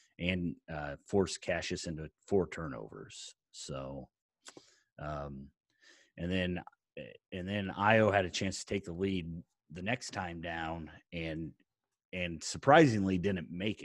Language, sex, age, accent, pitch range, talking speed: English, male, 30-49, American, 85-100 Hz, 130 wpm